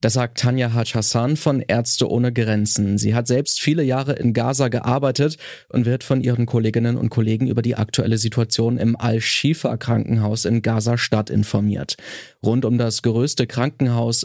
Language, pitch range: German, 115-135 Hz